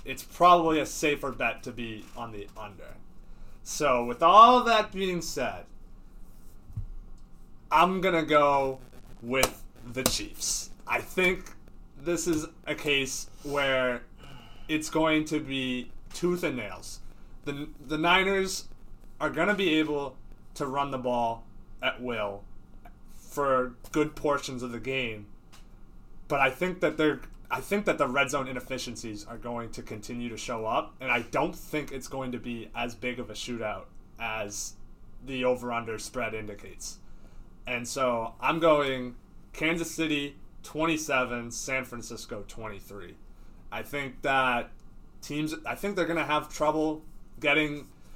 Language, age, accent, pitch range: English, 30-49, American, 120-155 Hz